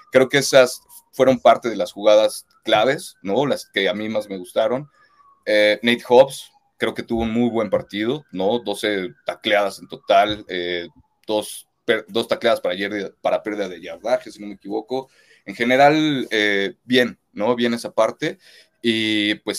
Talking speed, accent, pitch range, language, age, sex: 175 wpm, Mexican, 100-125 Hz, Spanish, 30-49, male